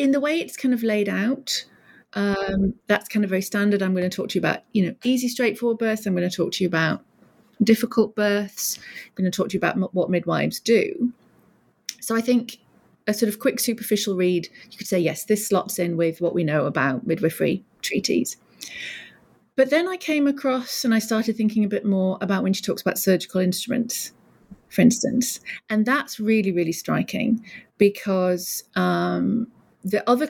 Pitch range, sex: 170-220 Hz, female